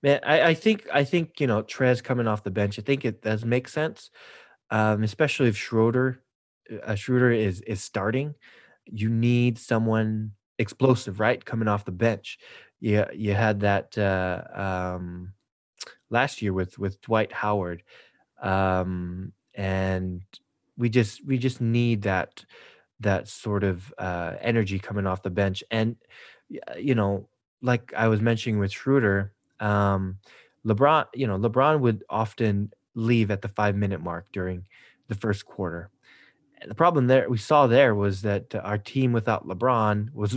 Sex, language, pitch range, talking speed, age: male, English, 100-115 Hz, 160 wpm, 20-39